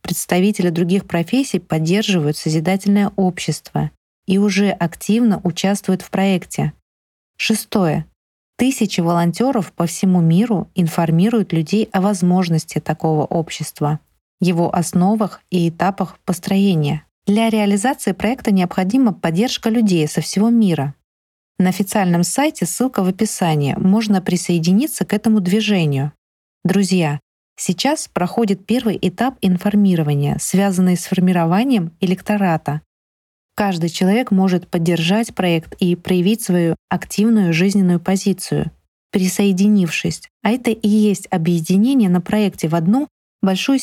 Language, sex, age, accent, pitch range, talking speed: Russian, female, 20-39, native, 170-210 Hz, 110 wpm